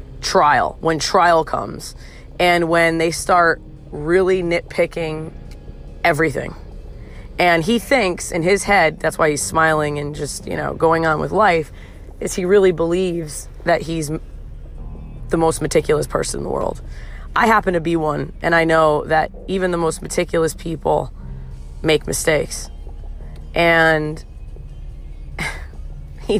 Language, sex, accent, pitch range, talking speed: English, female, American, 150-190 Hz, 135 wpm